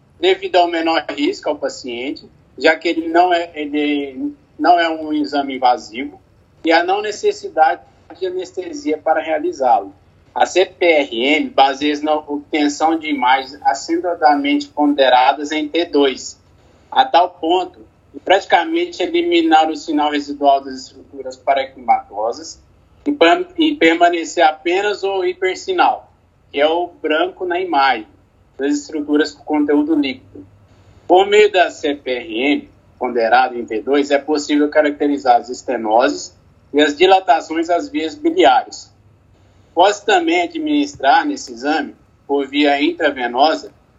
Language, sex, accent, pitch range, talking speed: Portuguese, male, Brazilian, 140-180 Hz, 125 wpm